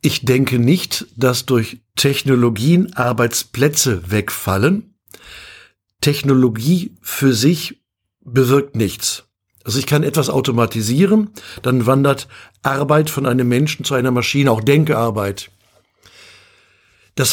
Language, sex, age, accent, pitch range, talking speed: German, male, 60-79, German, 120-150 Hz, 105 wpm